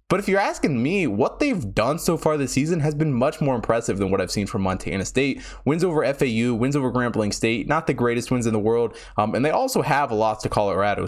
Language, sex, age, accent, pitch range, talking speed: English, male, 20-39, American, 110-145 Hz, 255 wpm